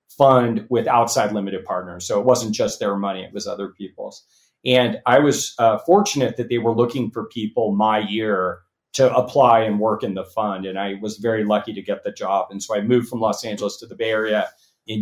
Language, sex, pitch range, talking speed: English, male, 105-125 Hz, 225 wpm